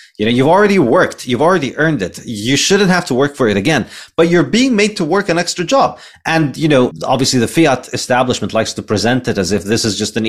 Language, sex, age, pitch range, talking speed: English, male, 30-49, 105-140 Hz, 250 wpm